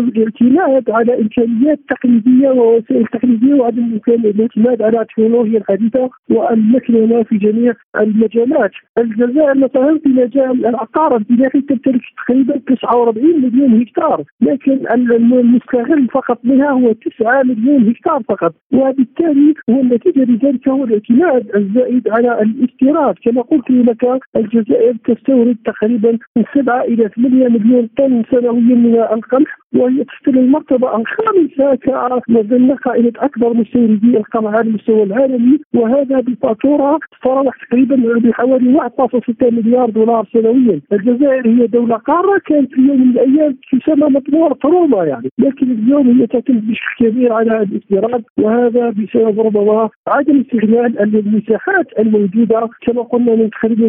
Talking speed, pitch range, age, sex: 125 wpm, 225-265 Hz, 50-69, male